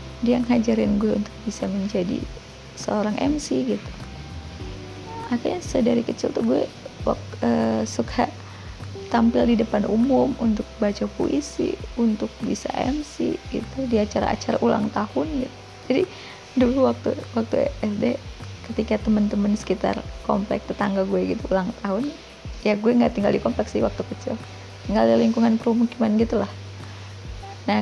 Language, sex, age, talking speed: Indonesian, female, 20-39, 140 wpm